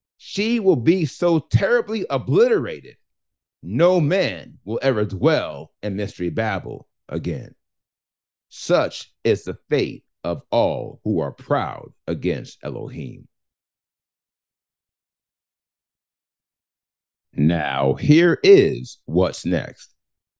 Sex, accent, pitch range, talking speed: male, American, 100-140 Hz, 90 wpm